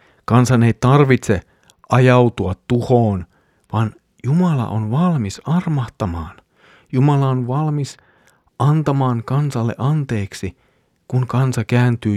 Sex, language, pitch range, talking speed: male, Finnish, 100-130 Hz, 95 wpm